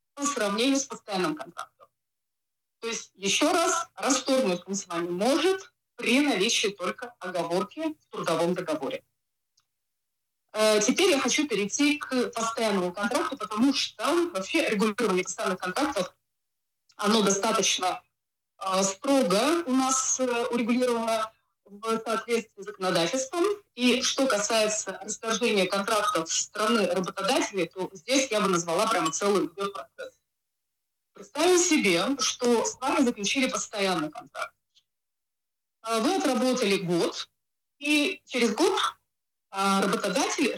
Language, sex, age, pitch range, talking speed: Dutch, female, 30-49, 195-275 Hz, 110 wpm